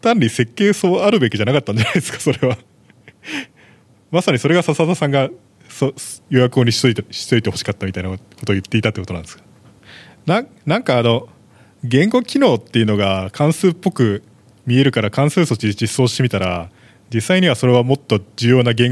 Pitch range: 105-145 Hz